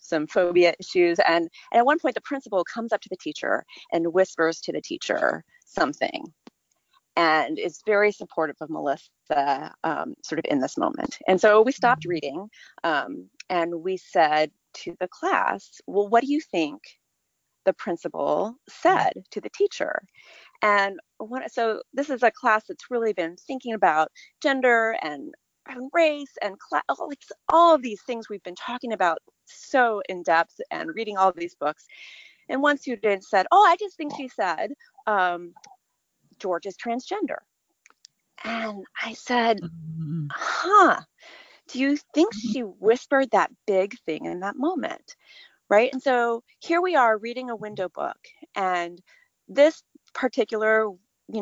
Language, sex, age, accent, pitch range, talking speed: English, female, 30-49, American, 180-280 Hz, 155 wpm